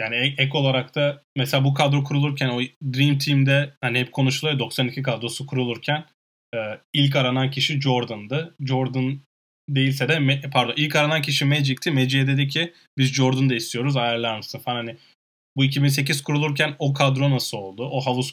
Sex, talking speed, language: male, 155 wpm, Turkish